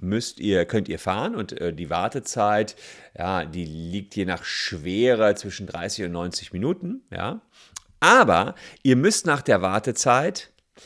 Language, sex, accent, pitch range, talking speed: German, male, German, 95-145 Hz, 145 wpm